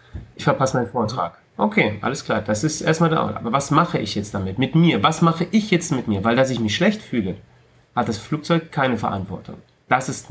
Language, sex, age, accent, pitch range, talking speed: German, male, 30-49, German, 115-165 Hz, 220 wpm